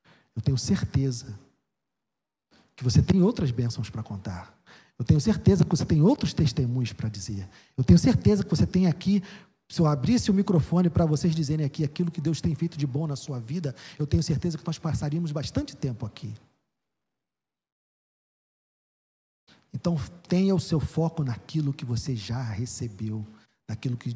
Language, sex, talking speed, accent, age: Portuguese, male, 165 wpm, Brazilian, 40-59